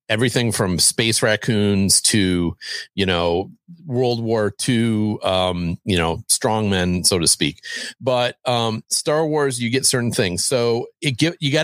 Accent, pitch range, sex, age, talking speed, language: American, 95-125 Hz, male, 40-59, 155 wpm, English